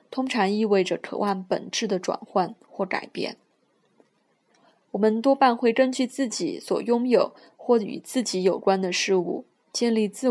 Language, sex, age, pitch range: Chinese, female, 20-39, 195-245 Hz